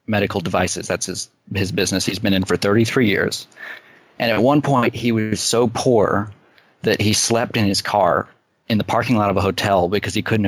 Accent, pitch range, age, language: American, 95-110 Hz, 30-49, English